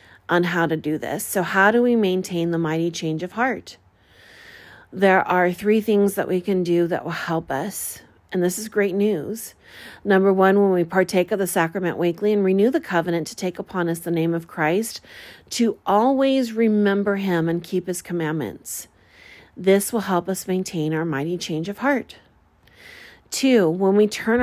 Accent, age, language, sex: American, 40-59, English, female